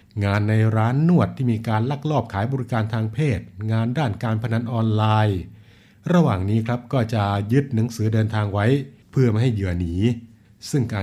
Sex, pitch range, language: male, 100-120 Hz, Thai